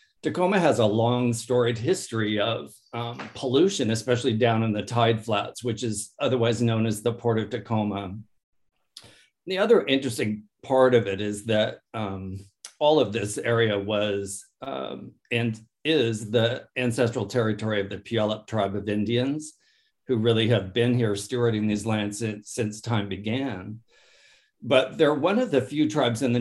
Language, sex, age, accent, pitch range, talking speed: English, male, 50-69, American, 105-120 Hz, 160 wpm